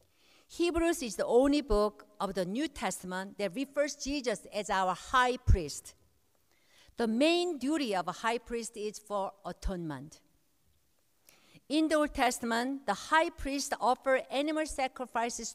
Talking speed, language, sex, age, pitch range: 140 wpm, English, female, 50-69, 205-285 Hz